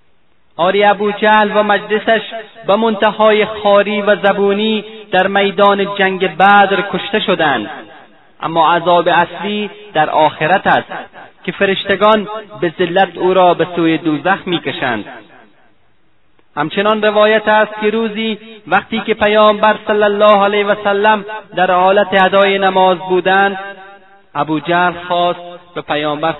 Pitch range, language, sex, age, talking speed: 155-205 Hz, Persian, male, 30-49, 120 wpm